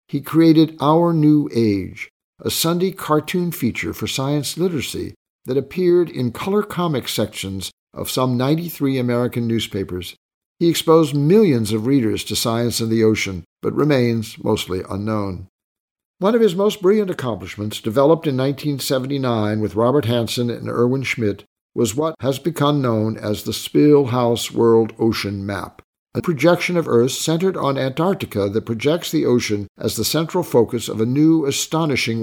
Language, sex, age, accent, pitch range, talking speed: English, male, 60-79, American, 110-155 Hz, 155 wpm